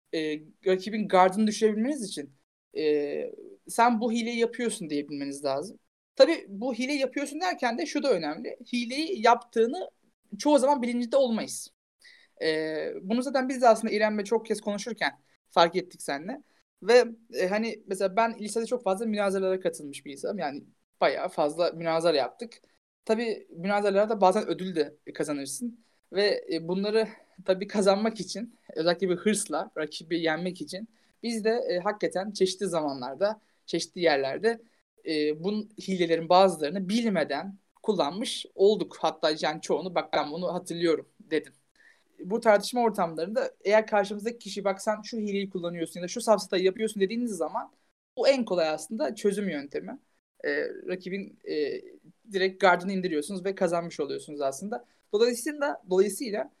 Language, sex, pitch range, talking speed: Turkish, male, 175-235 Hz, 140 wpm